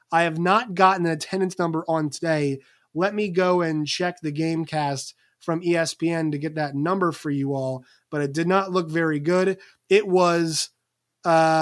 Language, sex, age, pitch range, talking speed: English, male, 20-39, 150-185 Hz, 185 wpm